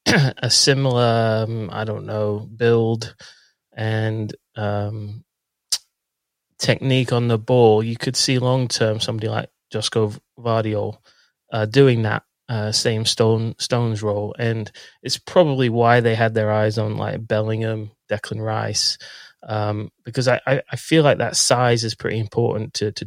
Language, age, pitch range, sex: English, 30-49, 110-130 Hz, male